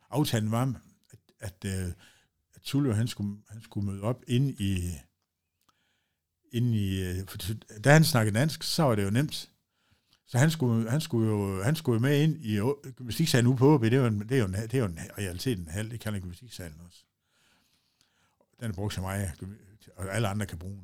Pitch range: 95-125 Hz